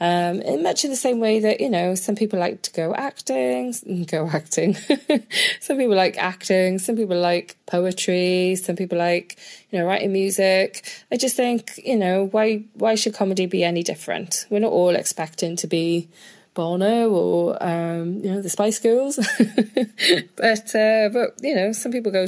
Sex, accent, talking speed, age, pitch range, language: female, British, 180 wpm, 20-39, 175-225 Hz, English